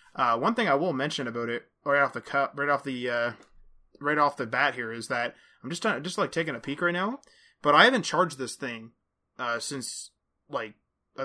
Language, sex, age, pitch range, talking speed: English, male, 20-39, 125-155 Hz, 230 wpm